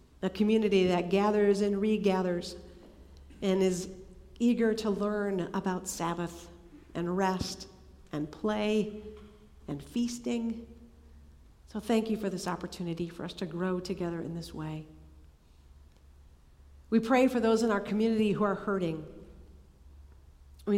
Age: 50-69